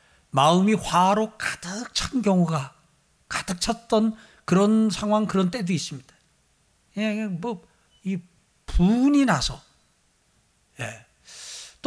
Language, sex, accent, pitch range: Korean, male, native, 170-225 Hz